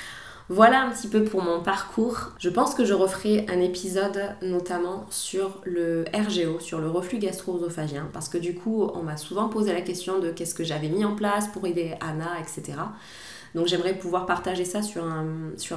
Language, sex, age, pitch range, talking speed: French, female, 20-39, 165-205 Hz, 185 wpm